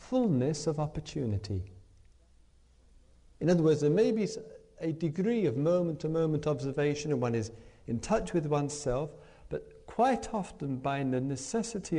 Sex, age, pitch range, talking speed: male, 50-69, 100-165 Hz, 135 wpm